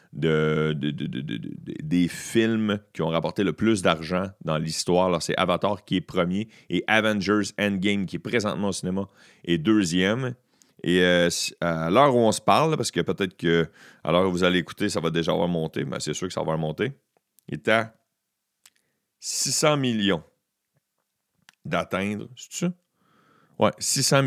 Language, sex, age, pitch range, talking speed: French, male, 40-59, 90-125 Hz, 175 wpm